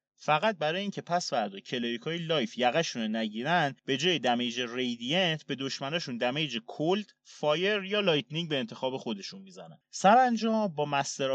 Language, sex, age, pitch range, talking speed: Persian, male, 30-49, 125-190 Hz, 135 wpm